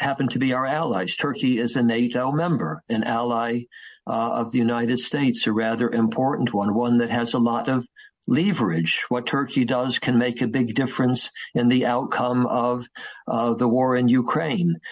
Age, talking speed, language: 50-69, 180 wpm, English